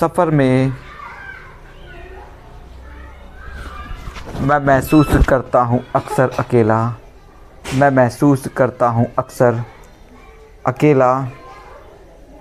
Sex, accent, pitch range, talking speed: male, native, 120-145 Hz, 70 wpm